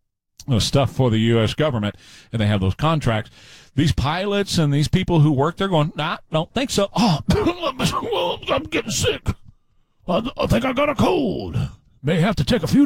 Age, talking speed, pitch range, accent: 50-69, 185 wpm, 135-220 Hz, American